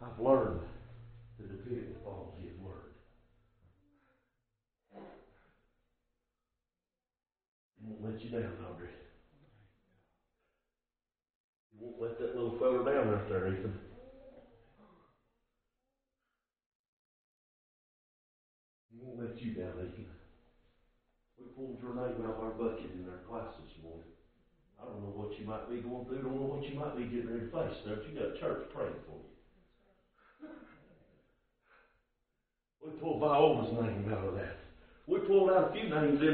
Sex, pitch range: male, 100-165 Hz